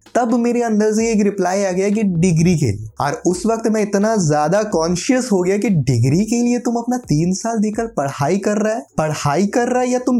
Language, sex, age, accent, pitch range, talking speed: Hindi, male, 20-39, native, 170-230 Hz, 170 wpm